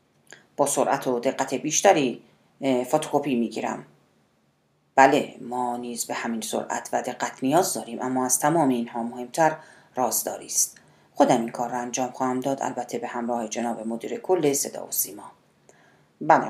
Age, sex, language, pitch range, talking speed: 40-59, female, Persian, 120-155 Hz, 155 wpm